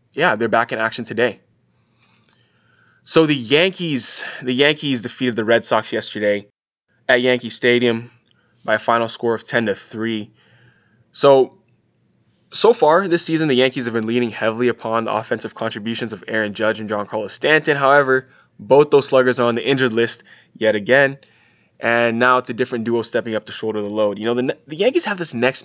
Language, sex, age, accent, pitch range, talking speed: English, male, 20-39, American, 110-130 Hz, 185 wpm